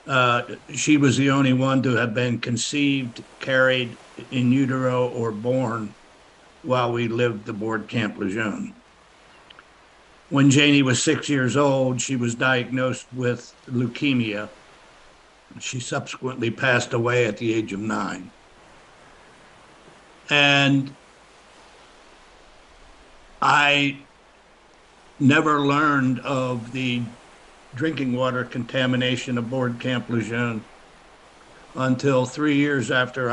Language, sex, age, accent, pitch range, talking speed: English, male, 60-79, American, 120-130 Hz, 105 wpm